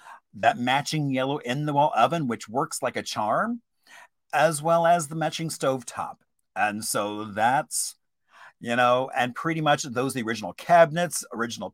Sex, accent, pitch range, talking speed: male, American, 130-175 Hz, 170 wpm